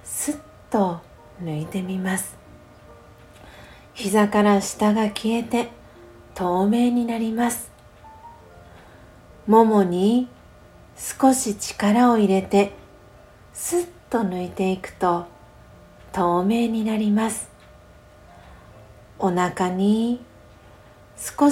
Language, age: Japanese, 40-59